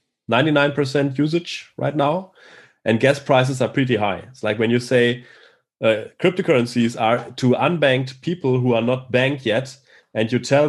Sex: male